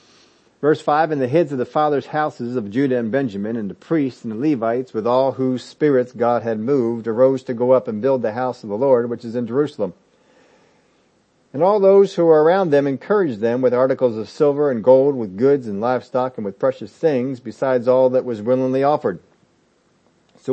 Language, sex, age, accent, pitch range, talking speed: English, male, 50-69, American, 120-150 Hz, 210 wpm